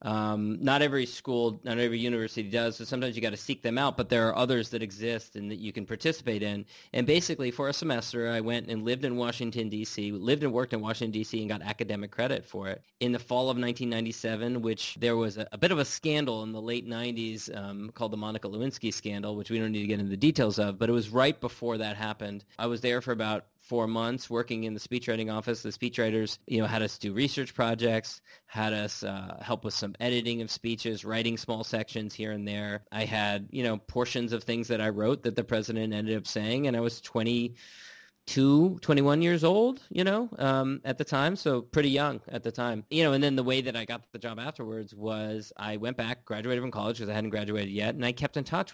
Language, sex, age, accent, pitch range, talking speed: English, male, 30-49, American, 110-125 Hz, 240 wpm